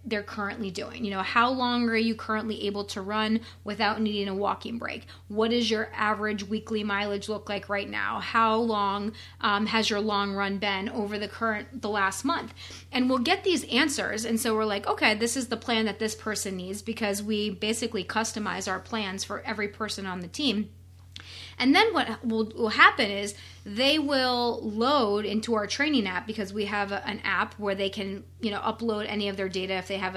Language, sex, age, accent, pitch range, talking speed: English, female, 30-49, American, 200-235 Hz, 210 wpm